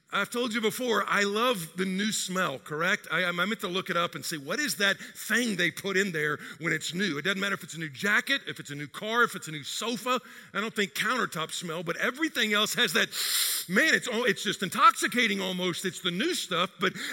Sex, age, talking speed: male, 50-69, 275 wpm